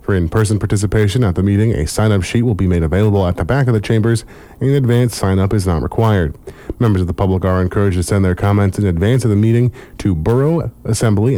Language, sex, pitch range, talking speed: English, male, 95-115 Hz, 220 wpm